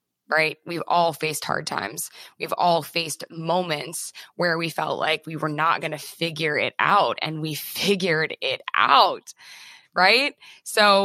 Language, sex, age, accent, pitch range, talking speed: English, female, 20-39, American, 155-190 Hz, 155 wpm